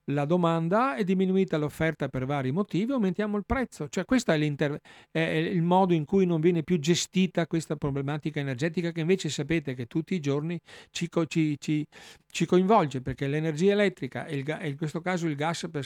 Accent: native